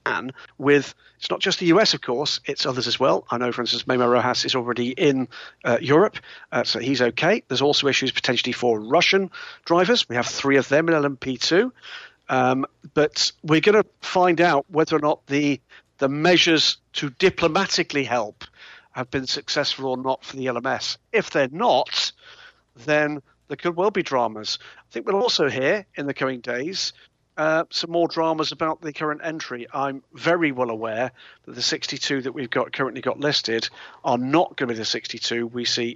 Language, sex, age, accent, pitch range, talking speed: English, male, 50-69, British, 125-160 Hz, 185 wpm